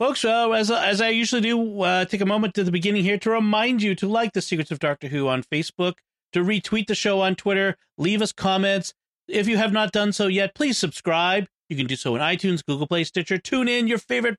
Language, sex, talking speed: English, male, 240 wpm